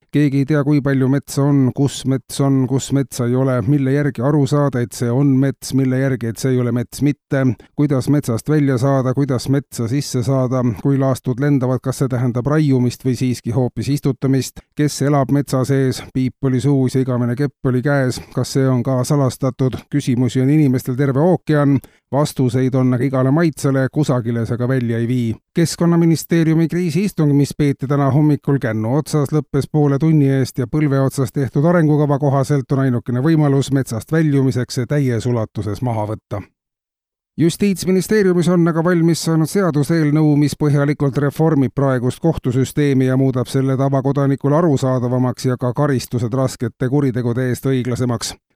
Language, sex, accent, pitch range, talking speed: Danish, male, Finnish, 130-145 Hz, 160 wpm